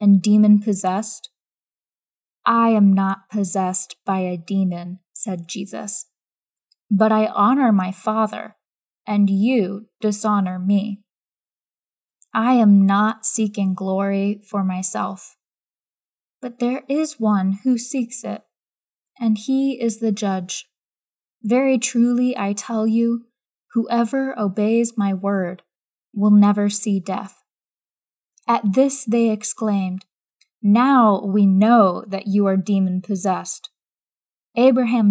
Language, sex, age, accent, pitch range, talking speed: English, female, 10-29, American, 195-235 Hz, 110 wpm